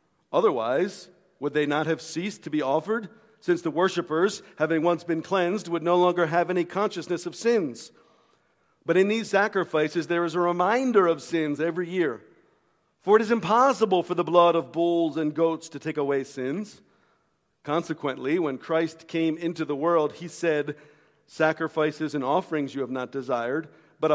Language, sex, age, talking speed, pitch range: English, male, 50-69, 170 wpm, 150-185 Hz